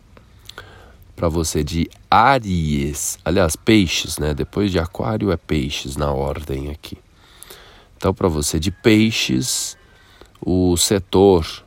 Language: Portuguese